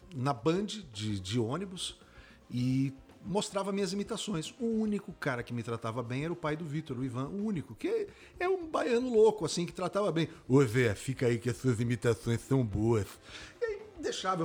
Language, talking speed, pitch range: Portuguese, 195 wpm, 130-190 Hz